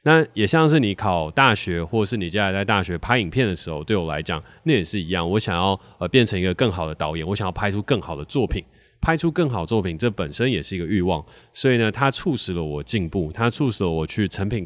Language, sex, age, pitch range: Chinese, male, 20-39, 90-115 Hz